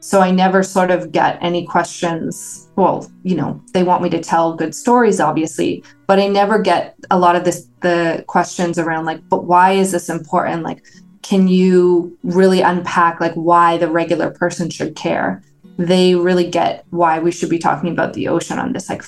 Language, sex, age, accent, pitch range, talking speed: English, female, 20-39, American, 170-195 Hz, 190 wpm